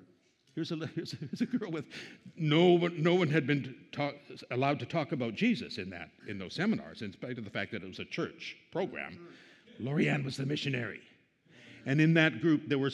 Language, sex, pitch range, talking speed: English, male, 120-165 Hz, 220 wpm